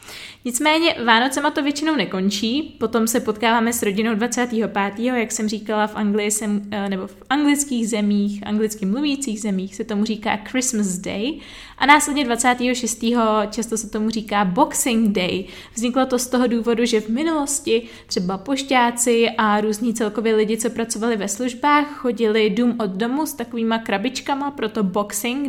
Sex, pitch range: female, 210-250 Hz